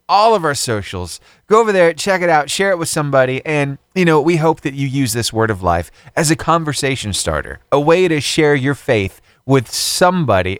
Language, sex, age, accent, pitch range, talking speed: English, male, 30-49, American, 115-175 Hz, 215 wpm